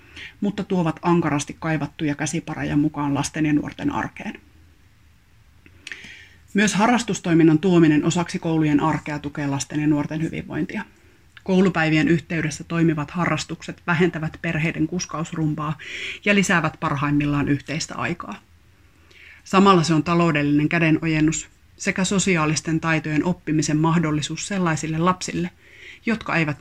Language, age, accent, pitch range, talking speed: Finnish, 30-49, native, 145-165 Hz, 105 wpm